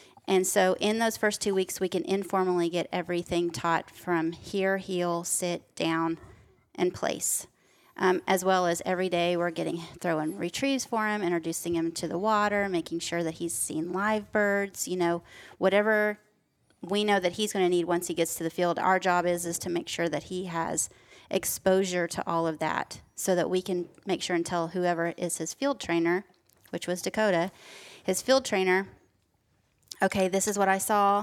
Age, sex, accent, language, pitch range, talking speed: 30-49, female, American, English, 170-195 Hz, 190 wpm